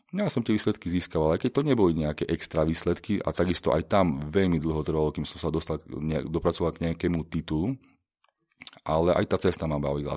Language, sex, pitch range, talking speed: Slovak, male, 80-90 Hz, 200 wpm